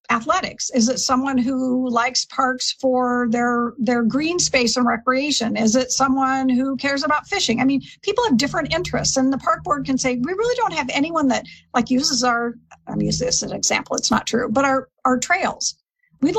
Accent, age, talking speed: American, 50-69, 205 wpm